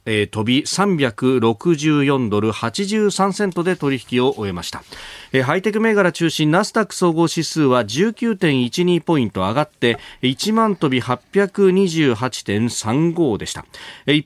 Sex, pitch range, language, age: male, 115-170 Hz, Japanese, 40-59